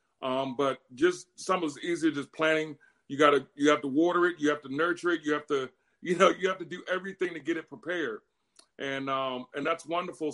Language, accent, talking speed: English, American, 240 wpm